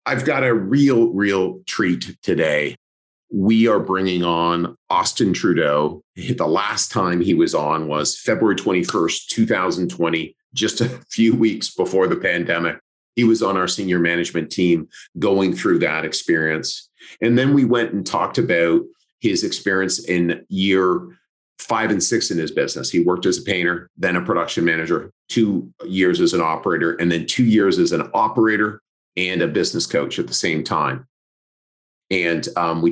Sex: male